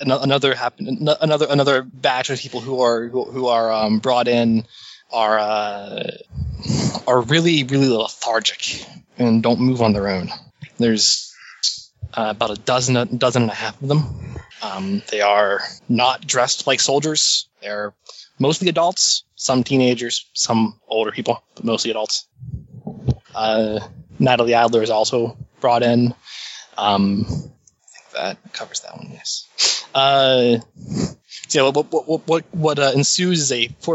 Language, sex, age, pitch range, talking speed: English, male, 20-39, 115-140 Hz, 150 wpm